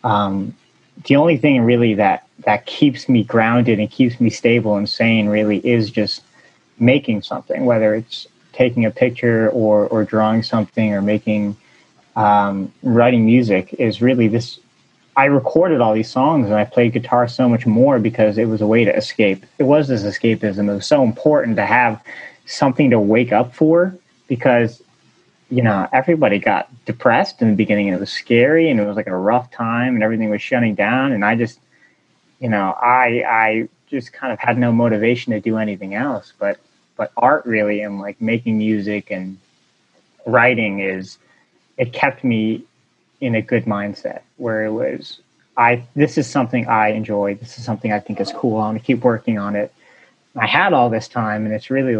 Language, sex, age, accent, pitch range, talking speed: English, male, 30-49, American, 105-120 Hz, 185 wpm